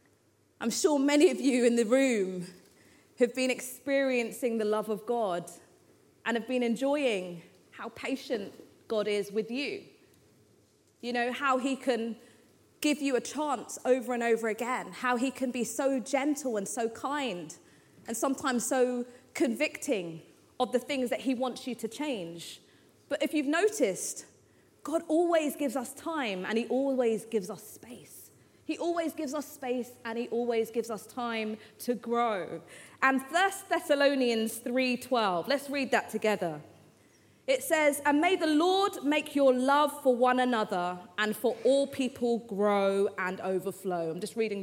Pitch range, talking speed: 215-280 Hz, 160 wpm